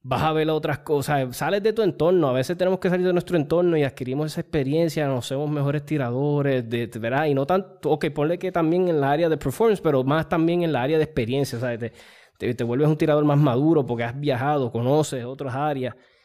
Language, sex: Spanish, male